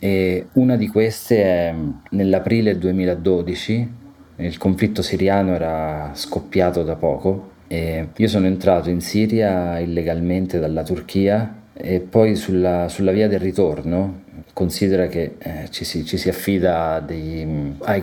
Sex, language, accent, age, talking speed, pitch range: male, Italian, native, 30-49, 125 wpm, 80-95 Hz